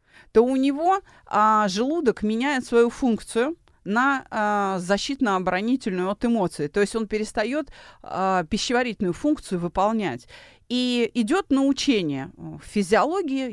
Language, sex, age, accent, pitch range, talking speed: Russian, female, 30-49, native, 190-270 Hz, 115 wpm